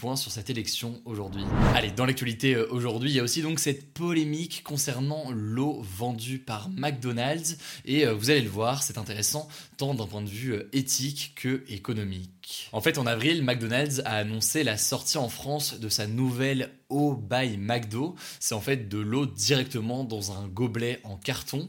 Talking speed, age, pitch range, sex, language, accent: 170 wpm, 20-39, 115-150 Hz, male, French, French